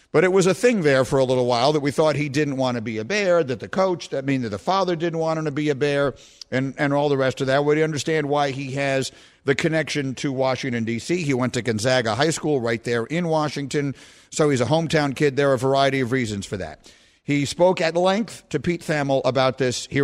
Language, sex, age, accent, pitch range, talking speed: English, male, 50-69, American, 130-160 Hz, 255 wpm